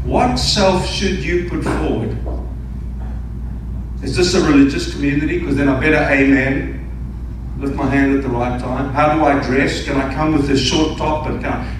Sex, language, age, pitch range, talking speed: male, English, 50-69, 140-230 Hz, 190 wpm